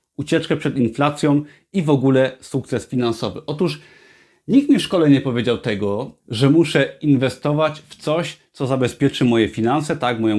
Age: 30-49